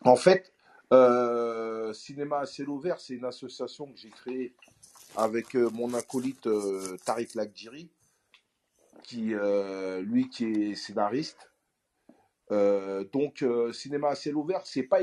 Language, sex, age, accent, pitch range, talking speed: French, male, 40-59, French, 110-160 Hz, 135 wpm